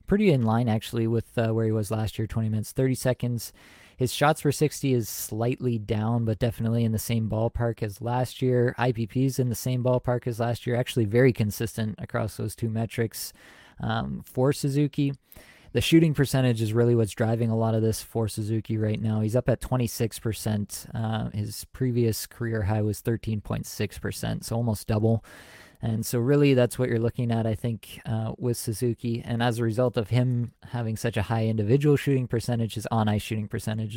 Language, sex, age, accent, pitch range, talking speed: English, male, 20-39, American, 110-125 Hz, 195 wpm